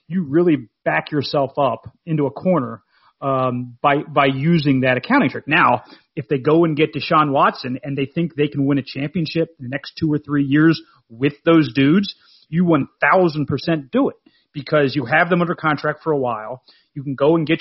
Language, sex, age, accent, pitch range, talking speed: English, male, 30-49, American, 135-165 Hz, 210 wpm